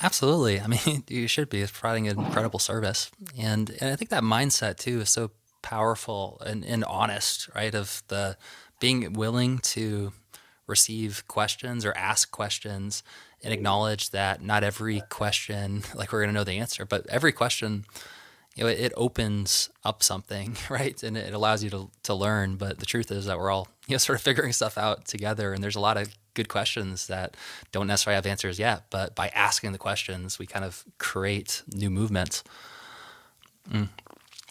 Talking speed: 185 wpm